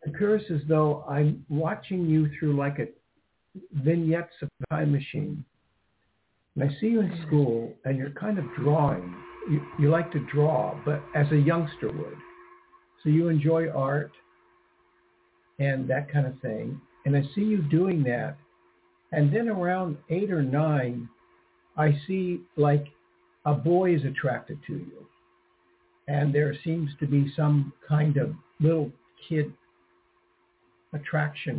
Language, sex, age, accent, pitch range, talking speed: English, male, 60-79, American, 140-165 Hz, 140 wpm